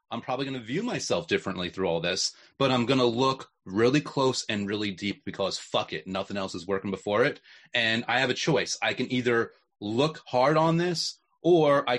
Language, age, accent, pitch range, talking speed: English, 30-49, American, 115-150 Hz, 215 wpm